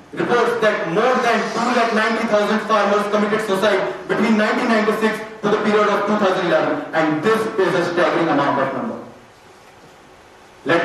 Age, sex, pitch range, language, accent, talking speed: 40-59, male, 185-220 Hz, English, Indian, 135 wpm